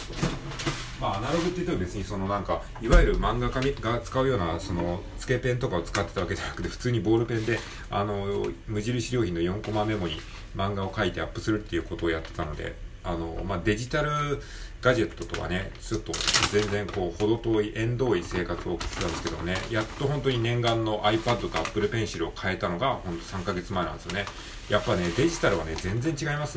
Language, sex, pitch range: Japanese, male, 85-115 Hz